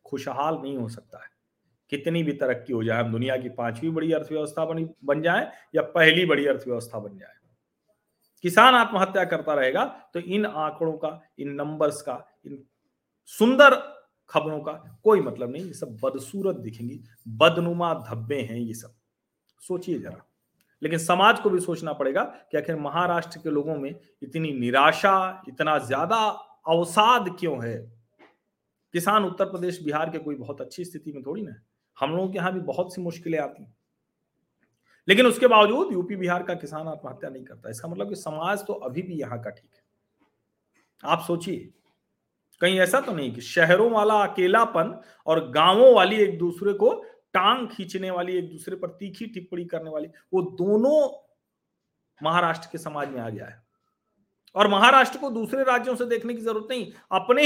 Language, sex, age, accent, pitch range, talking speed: Hindi, male, 40-59, native, 145-200 Hz, 170 wpm